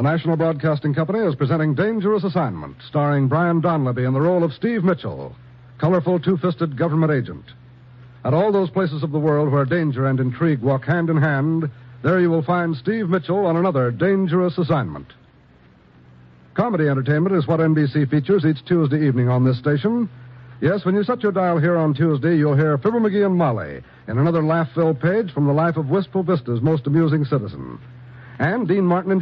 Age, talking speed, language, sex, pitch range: 60-79, 185 wpm, English, male, 135-180 Hz